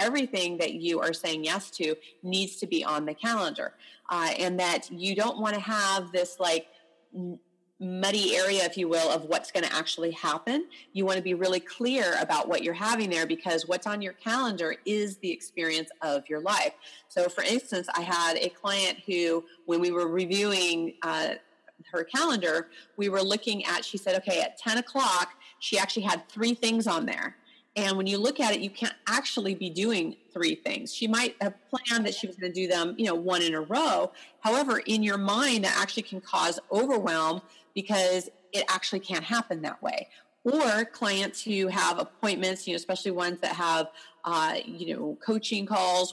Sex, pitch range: female, 175-225 Hz